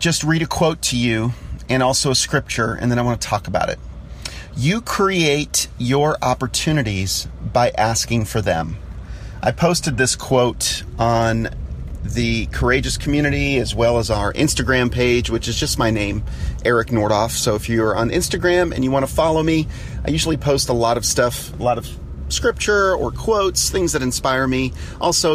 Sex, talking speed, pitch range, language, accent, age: male, 180 wpm, 110-140 Hz, English, American, 40-59